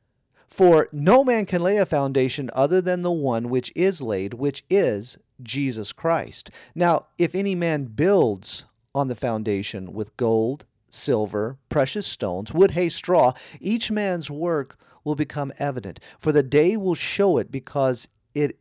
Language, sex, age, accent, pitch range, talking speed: English, male, 40-59, American, 110-155 Hz, 155 wpm